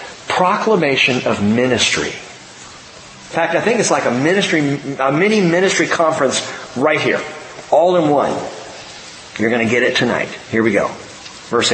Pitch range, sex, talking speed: 150-220 Hz, male, 150 wpm